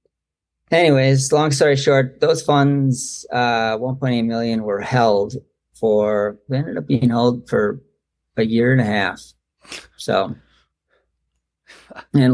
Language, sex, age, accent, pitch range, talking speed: English, male, 30-49, American, 105-135 Hz, 120 wpm